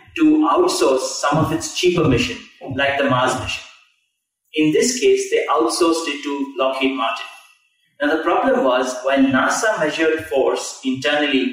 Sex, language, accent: male, English, Indian